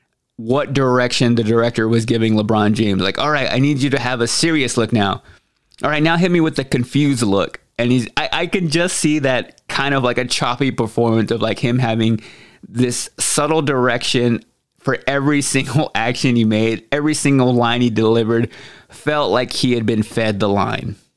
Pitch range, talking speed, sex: 115-140 Hz, 195 wpm, male